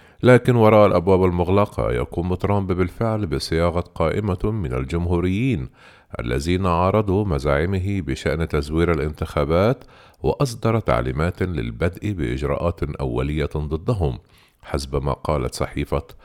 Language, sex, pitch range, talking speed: Arabic, male, 75-105 Hz, 100 wpm